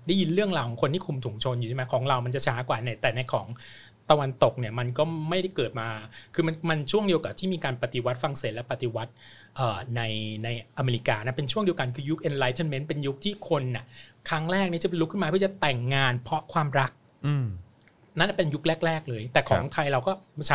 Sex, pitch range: male, 125-160 Hz